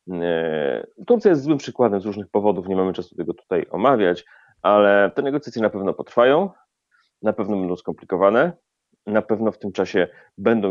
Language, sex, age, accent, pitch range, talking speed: Polish, male, 30-49, native, 90-105 Hz, 165 wpm